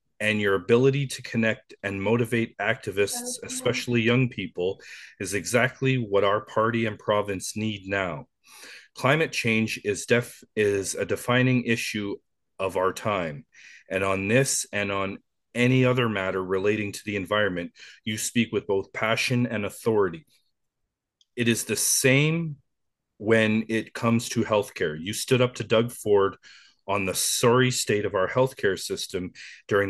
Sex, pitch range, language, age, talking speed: male, 105-125 Hz, English, 30-49, 150 wpm